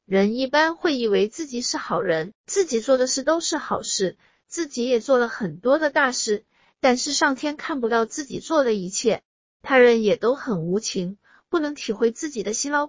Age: 50-69